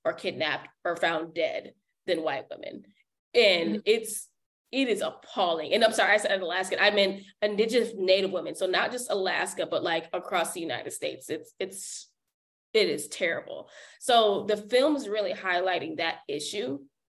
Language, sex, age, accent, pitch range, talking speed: English, female, 10-29, American, 185-225 Hz, 160 wpm